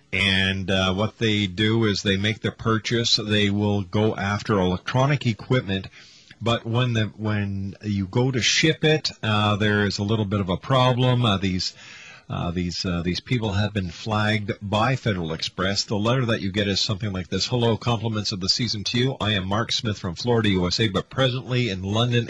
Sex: male